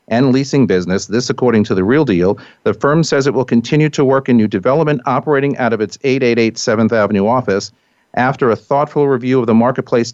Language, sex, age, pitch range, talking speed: English, male, 40-59, 110-140 Hz, 205 wpm